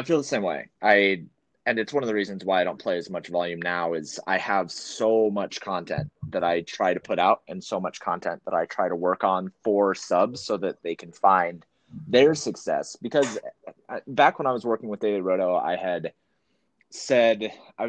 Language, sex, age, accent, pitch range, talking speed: English, male, 20-39, American, 85-105 Hz, 215 wpm